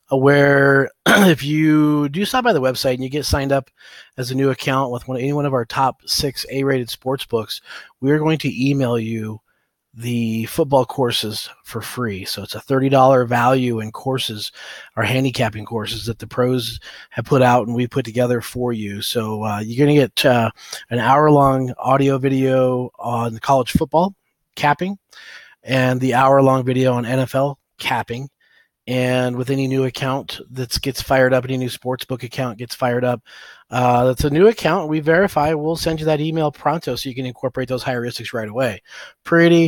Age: 30-49